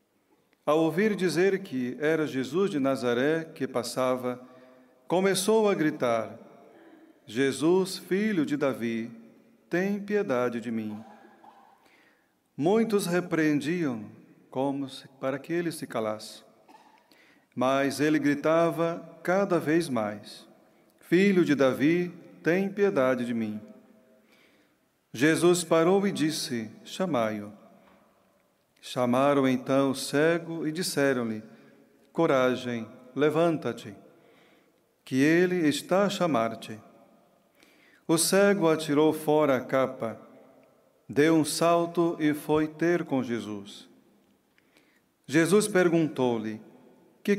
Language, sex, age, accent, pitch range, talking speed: Portuguese, male, 40-59, Brazilian, 125-170 Hz, 100 wpm